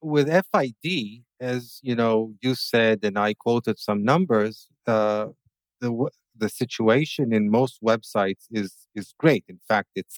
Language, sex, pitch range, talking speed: English, male, 120-150 Hz, 145 wpm